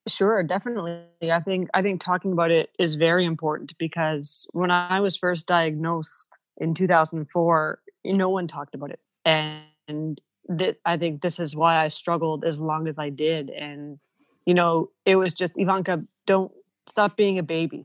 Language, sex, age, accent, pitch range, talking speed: English, female, 30-49, American, 160-185 Hz, 170 wpm